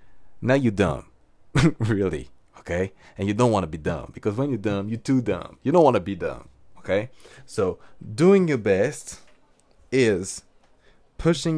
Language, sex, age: English, male, 30-49